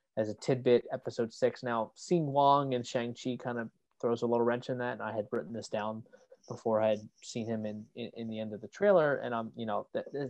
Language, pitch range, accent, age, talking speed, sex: English, 110-140 Hz, American, 20-39, 245 wpm, male